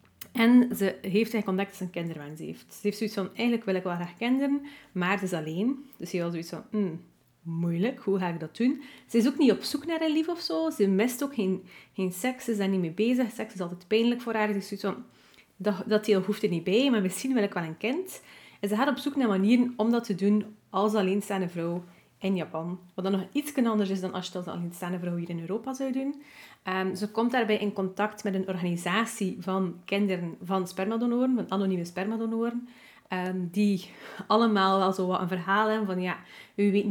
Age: 30-49